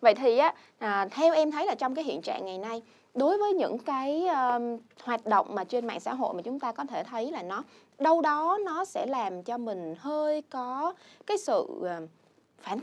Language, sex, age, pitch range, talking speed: Vietnamese, female, 20-39, 220-305 Hz, 205 wpm